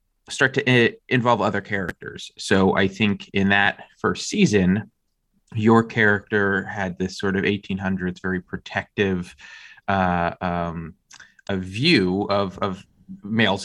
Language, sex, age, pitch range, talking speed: English, male, 30-49, 90-105 Hz, 120 wpm